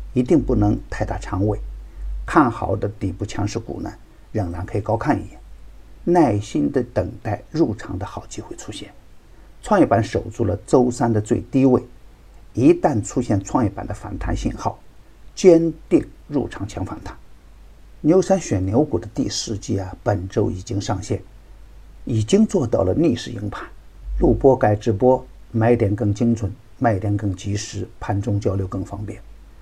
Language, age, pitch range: Chinese, 50-69, 100-120 Hz